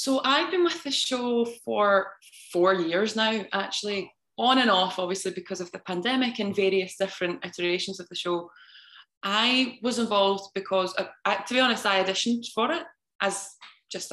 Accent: British